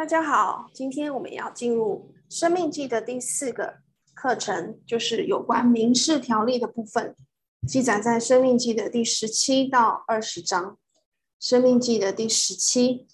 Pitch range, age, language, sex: 225-275 Hz, 20-39, Chinese, female